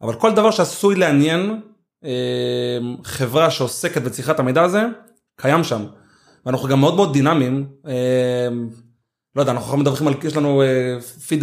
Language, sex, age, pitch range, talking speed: Hebrew, male, 20-39, 130-160 Hz, 145 wpm